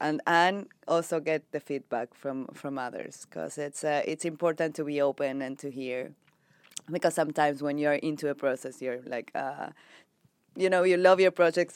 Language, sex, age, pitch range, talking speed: English, female, 20-39, 135-155 Hz, 185 wpm